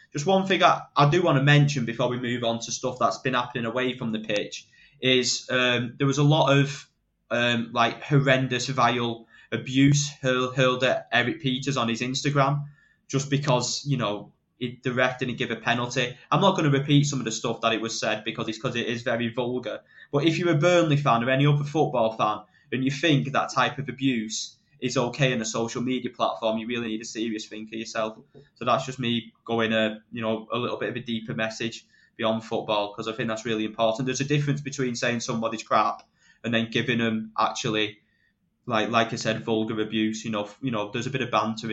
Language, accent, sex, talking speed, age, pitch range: English, British, male, 225 wpm, 20-39, 115-130 Hz